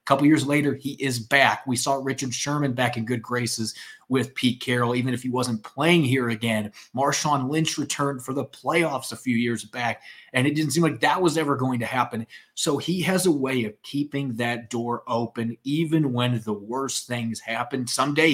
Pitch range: 115-140 Hz